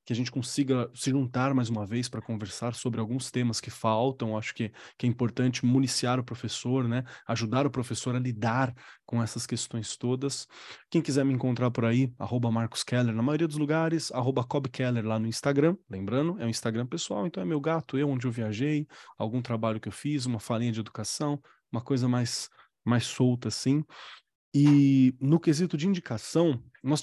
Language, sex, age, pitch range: Portuguese, male, 20-39, 120-145 Hz